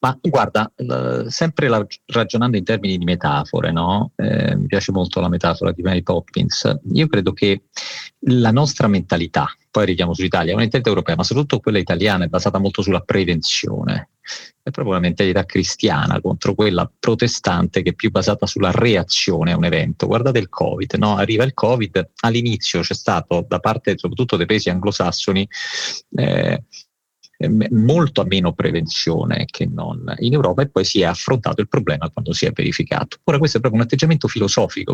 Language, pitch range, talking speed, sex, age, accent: Italian, 90-125 Hz, 170 wpm, male, 40-59, native